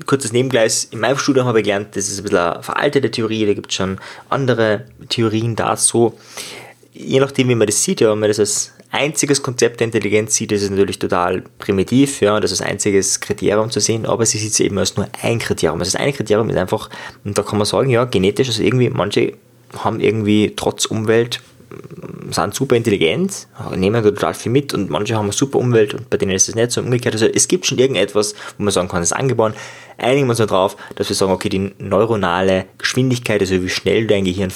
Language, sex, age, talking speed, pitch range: German, male, 20-39, 230 wpm, 100-125 Hz